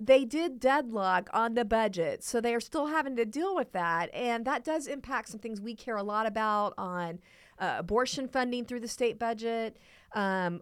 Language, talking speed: English, 200 wpm